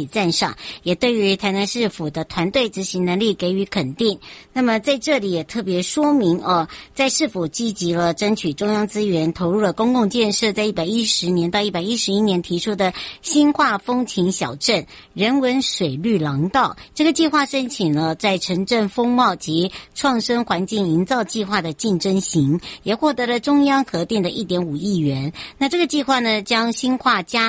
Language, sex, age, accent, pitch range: Chinese, male, 60-79, American, 180-240 Hz